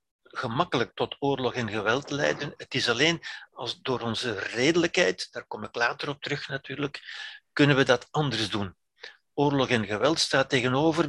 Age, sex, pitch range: 60-79, male, 125-160 Hz